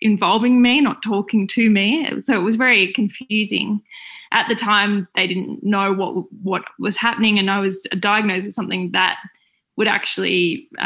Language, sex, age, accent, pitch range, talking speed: English, female, 20-39, Australian, 195-230 Hz, 170 wpm